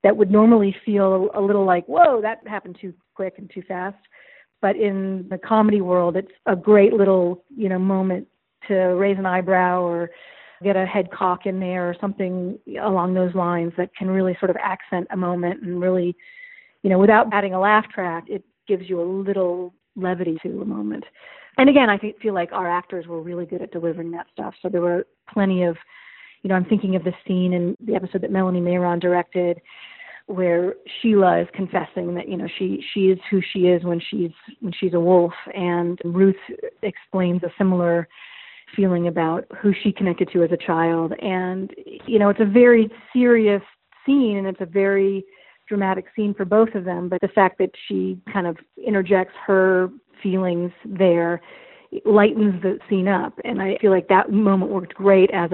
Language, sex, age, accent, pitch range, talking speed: English, female, 40-59, American, 180-205 Hz, 190 wpm